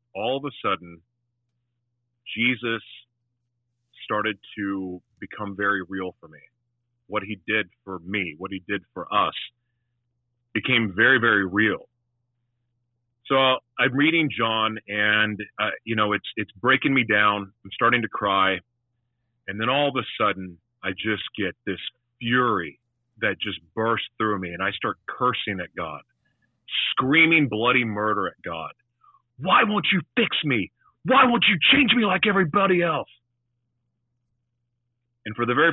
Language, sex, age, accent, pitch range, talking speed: English, male, 30-49, American, 105-120 Hz, 145 wpm